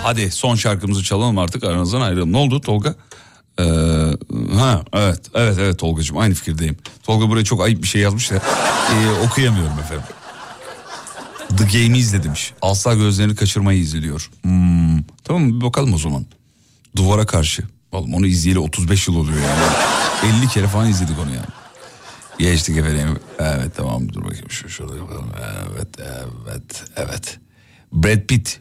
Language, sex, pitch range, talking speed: Turkish, male, 90-120 Hz, 145 wpm